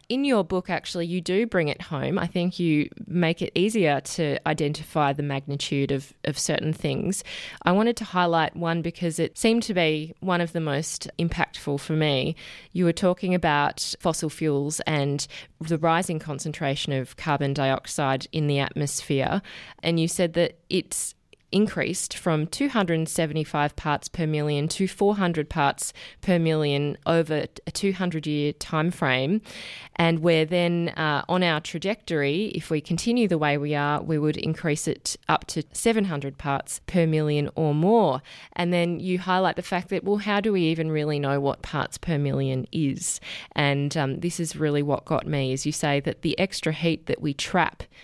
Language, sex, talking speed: English, female, 175 wpm